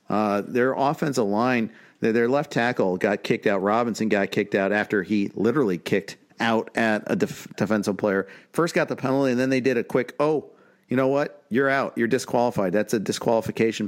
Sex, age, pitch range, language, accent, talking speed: male, 50-69, 105-150 Hz, English, American, 195 wpm